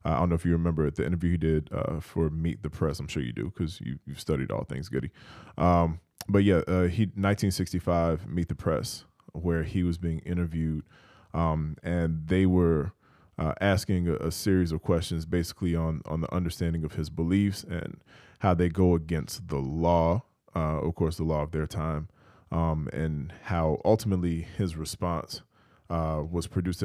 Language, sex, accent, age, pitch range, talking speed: English, male, American, 20-39, 80-90 Hz, 185 wpm